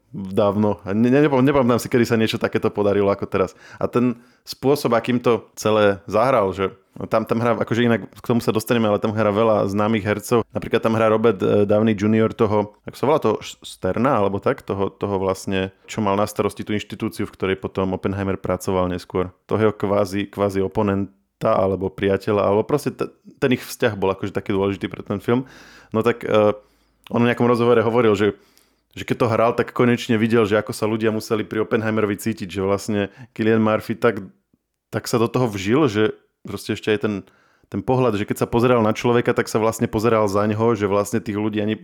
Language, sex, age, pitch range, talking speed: Slovak, male, 20-39, 100-120 Hz, 205 wpm